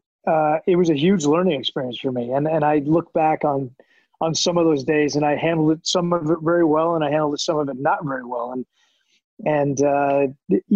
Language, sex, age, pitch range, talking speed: English, male, 30-49, 145-175 Hz, 235 wpm